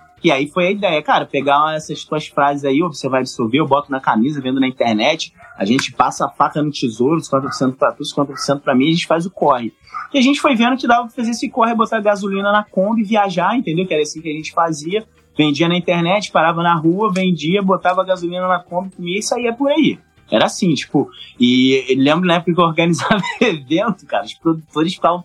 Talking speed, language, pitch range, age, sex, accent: 220 wpm, Portuguese, 145-210 Hz, 20-39, male, Brazilian